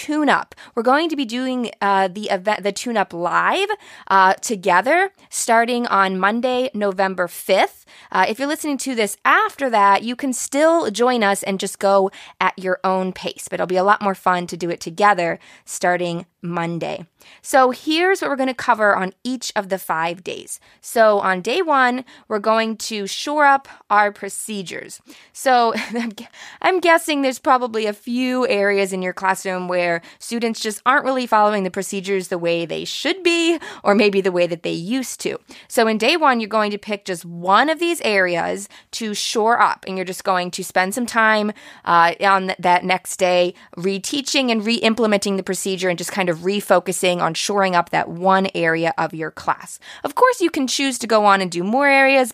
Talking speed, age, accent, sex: 195 wpm, 20-39, American, female